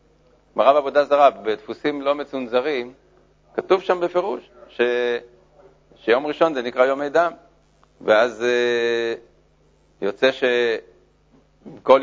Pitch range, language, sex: 120-155 Hz, Hebrew, male